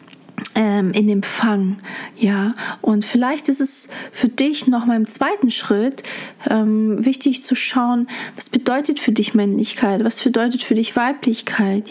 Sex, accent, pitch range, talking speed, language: female, German, 205-245 Hz, 145 wpm, German